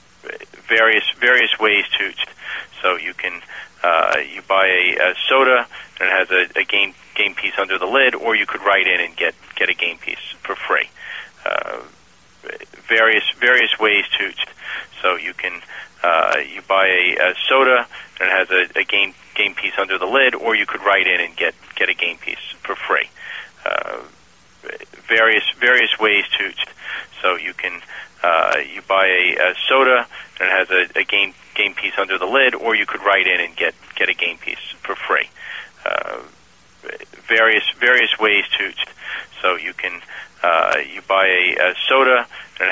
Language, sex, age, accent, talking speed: English, male, 40-59, American, 180 wpm